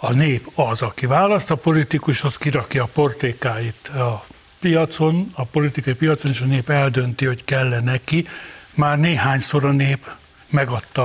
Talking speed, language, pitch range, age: 140 wpm, Hungarian, 135-175 Hz, 60-79